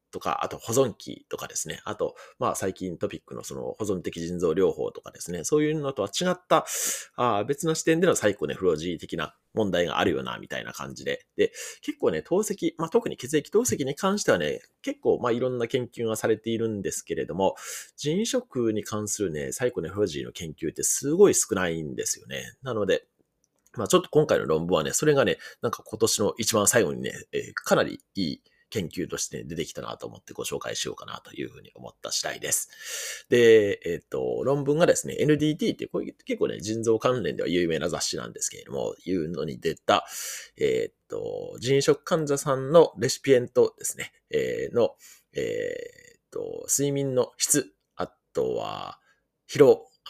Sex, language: male, Japanese